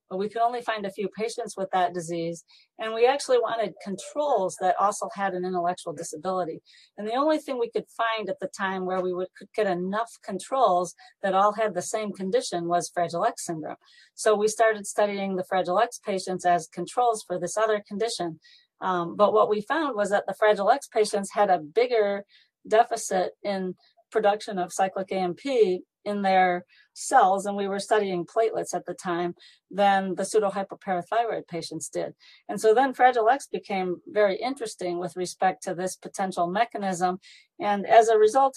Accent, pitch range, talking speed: American, 185-220 Hz, 180 wpm